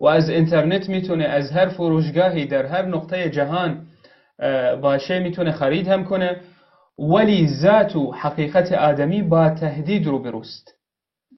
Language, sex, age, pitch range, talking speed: Persian, male, 30-49, 155-185 Hz, 125 wpm